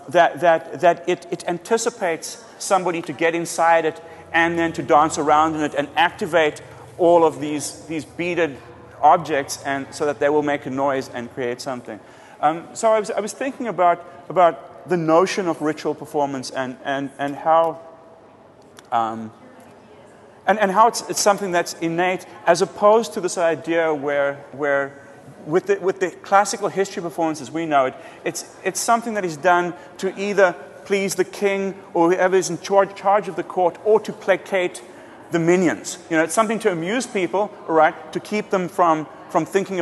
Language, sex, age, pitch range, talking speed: English, male, 30-49, 155-195 Hz, 180 wpm